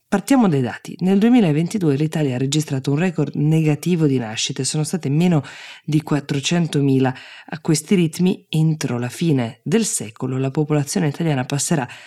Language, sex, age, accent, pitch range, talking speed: Italian, female, 20-39, native, 135-180 Hz, 150 wpm